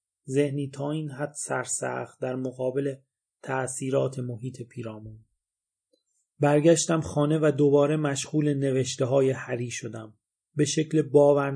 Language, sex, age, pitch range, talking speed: Persian, male, 30-49, 120-145 Hz, 110 wpm